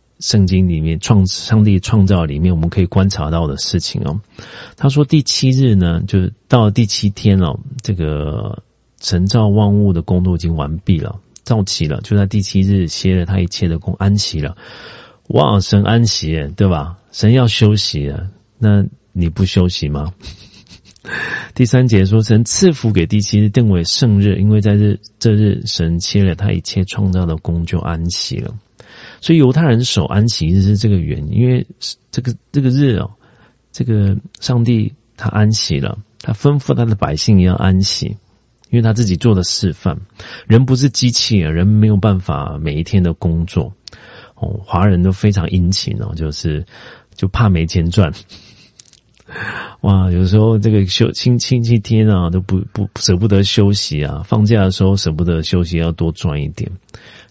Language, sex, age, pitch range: Korean, male, 40-59, 90-110 Hz